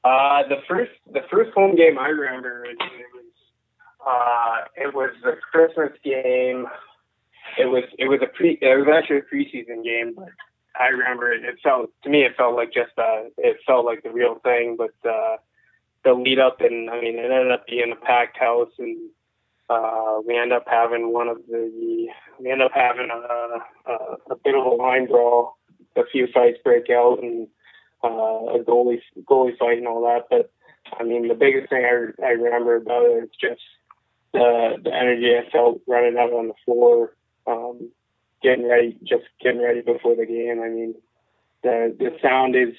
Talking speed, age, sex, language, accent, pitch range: 190 wpm, 20-39, male, English, American, 120-150 Hz